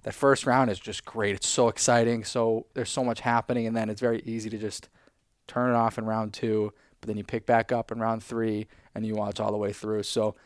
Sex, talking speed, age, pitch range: male, 250 wpm, 20-39, 105-115 Hz